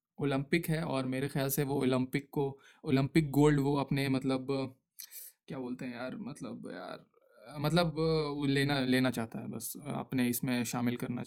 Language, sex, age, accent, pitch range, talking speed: Hindi, male, 20-39, native, 130-155 Hz, 160 wpm